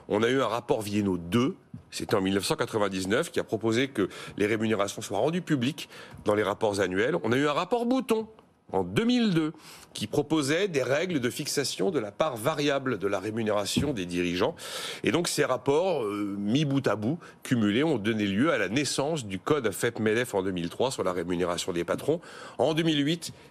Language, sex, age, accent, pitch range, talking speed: French, male, 40-59, French, 95-145 Hz, 190 wpm